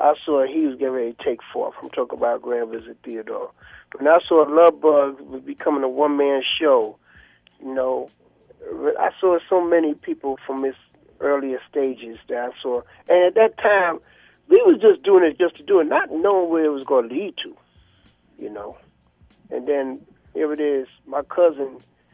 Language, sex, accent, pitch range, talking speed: English, male, American, 135-180 Hz, 185 wpm